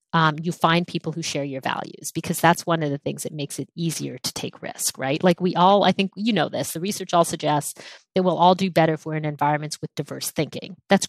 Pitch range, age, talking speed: 160-195 Hz, 40-59, 255 wpm